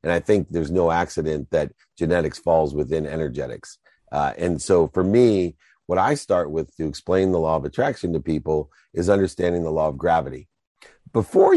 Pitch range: 85-120 Hz